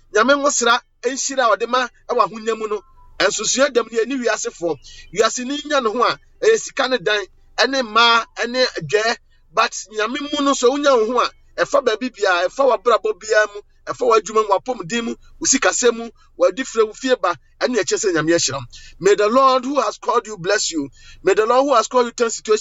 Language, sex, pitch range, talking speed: English, male, 210-265 Hz, 70 wpm